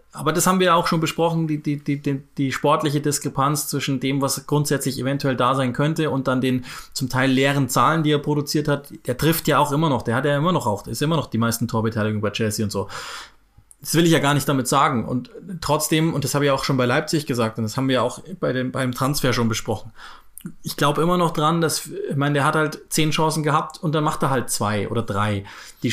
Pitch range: 130-160 Hz